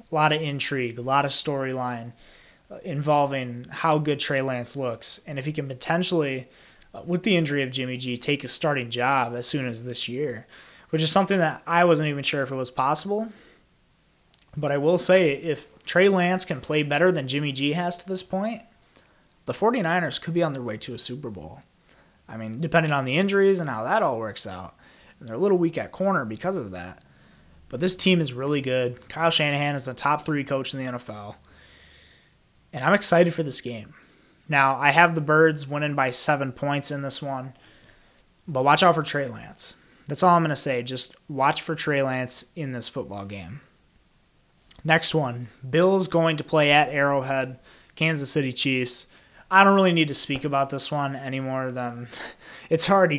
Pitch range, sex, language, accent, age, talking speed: 130-165 Hz, male, English, American, 20-39, 195 wpm